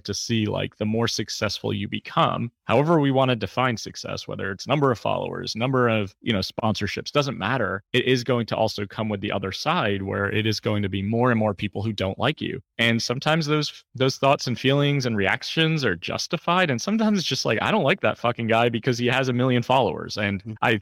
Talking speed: 230 wpm